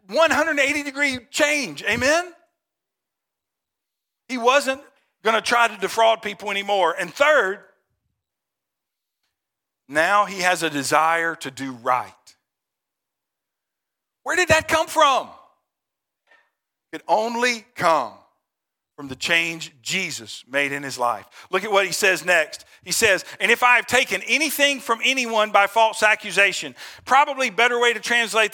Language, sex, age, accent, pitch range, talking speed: English, male, 50-69, American, 200-265 Hz, 130 wpm